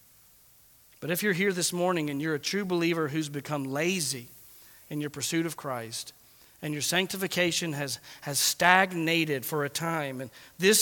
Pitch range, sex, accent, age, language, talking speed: 140-180 Hz, male, American, 40-59, English, 165 wpm